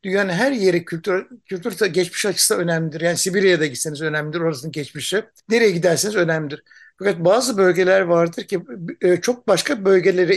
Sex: male